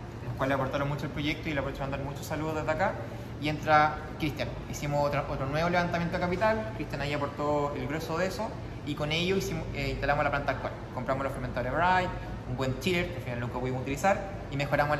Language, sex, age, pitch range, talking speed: Spanish, male, 20-39, 130-160 Hz, 210 wpm